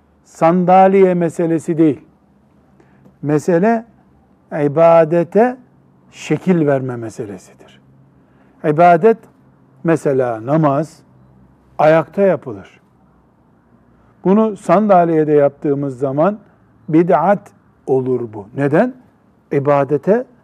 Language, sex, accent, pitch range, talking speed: Turkish, male, native, 145-190 Hz, 65 wpm